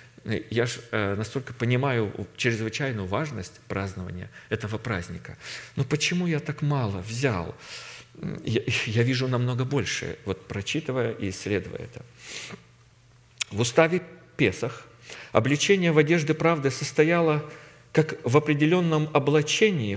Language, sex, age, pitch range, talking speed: Russian, male, 40-59, 110-150 Hz, 115 wpm